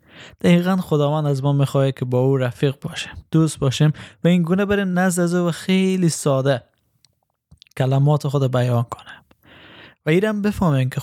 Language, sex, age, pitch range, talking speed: Persian, male, 20-39, 125-155 Hz, 165 wpm